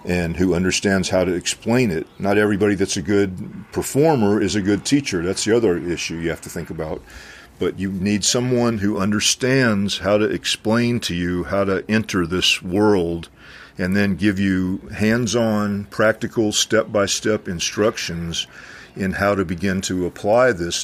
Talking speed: 165 wpm